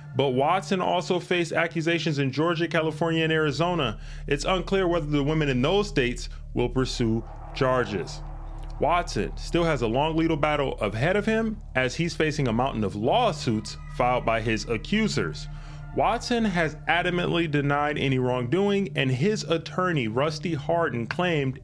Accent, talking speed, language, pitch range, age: American, 150 wpm, English, 130-170 Hz, 30-49